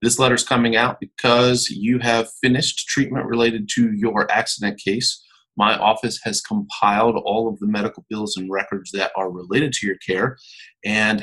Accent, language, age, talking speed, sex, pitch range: American, English, 40-59, 175 wpm, male, 100-130 Hz